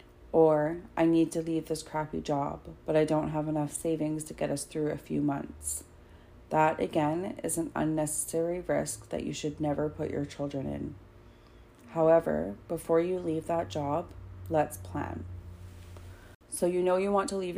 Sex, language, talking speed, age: female, English, 170 wpm, 30-49